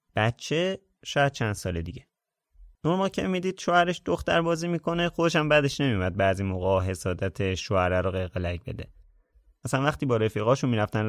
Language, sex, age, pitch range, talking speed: Persian, male, 30-49, 100-150 Hz, 155 wpm